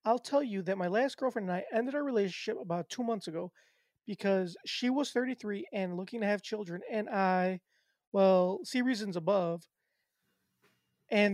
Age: 20-39